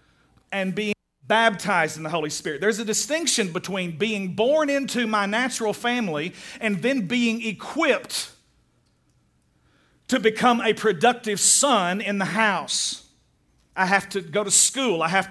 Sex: male